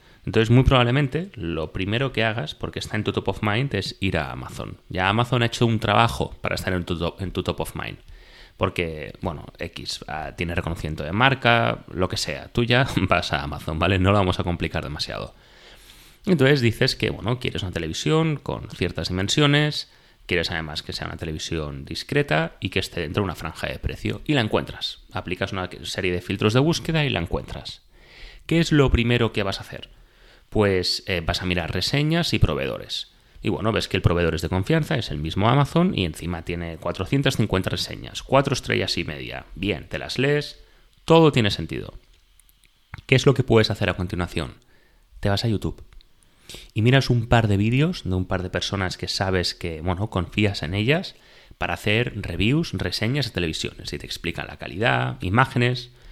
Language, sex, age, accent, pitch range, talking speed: Spanish, male, 30-49, Spanish, 90-125 Hz, 195 wpm